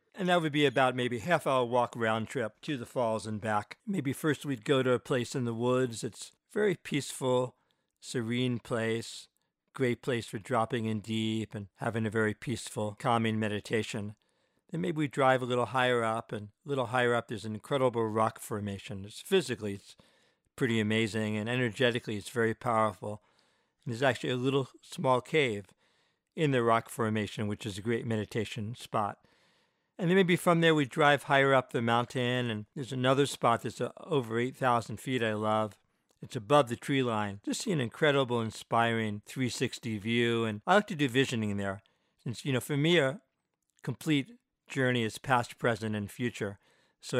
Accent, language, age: American, English, 60-79